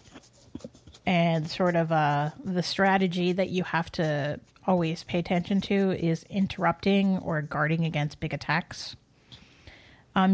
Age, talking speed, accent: 30-49, 130 wpm, American